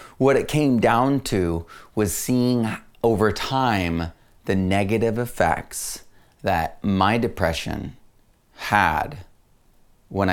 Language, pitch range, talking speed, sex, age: English, 90-115 Hz, 100 wpm, male, 30-49